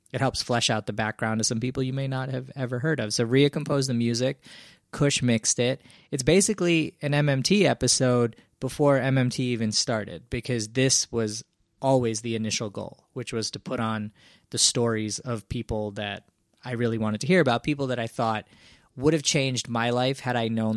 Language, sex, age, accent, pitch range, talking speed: English, male, 20-39, American, 115-135 Hz, 195 wpm